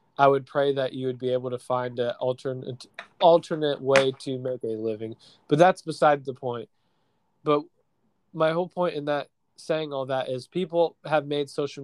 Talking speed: 190 wpm